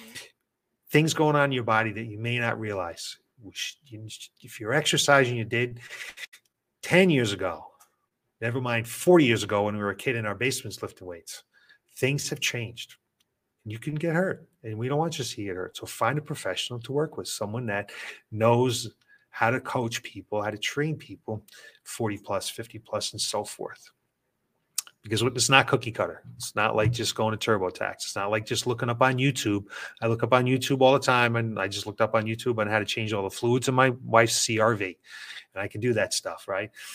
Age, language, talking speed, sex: 30-49, English, 210 wpm, male